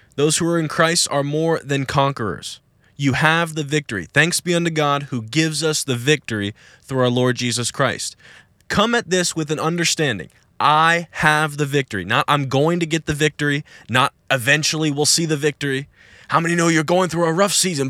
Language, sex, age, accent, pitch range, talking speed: English, male, 20-39, American, 125-165 Hz, 200 wpm